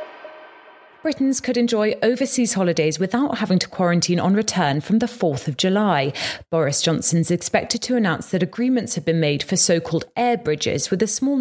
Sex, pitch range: female, 155-220 Hz